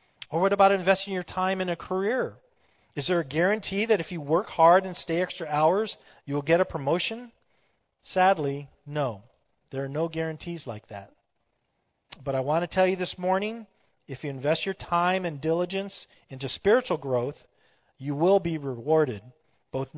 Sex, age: male, 40-59